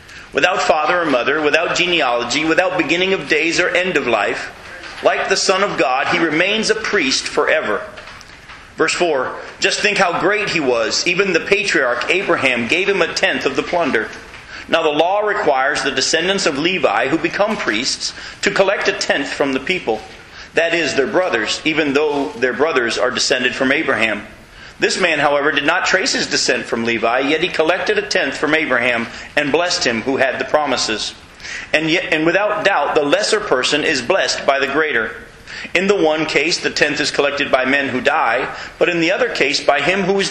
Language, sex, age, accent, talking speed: English, male, 40-59, American, 195 wpm